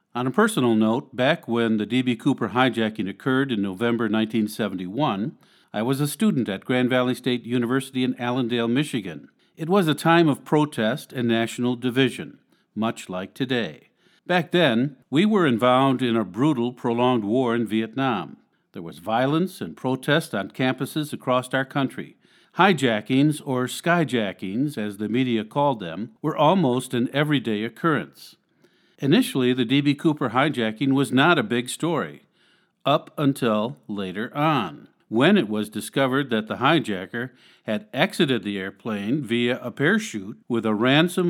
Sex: male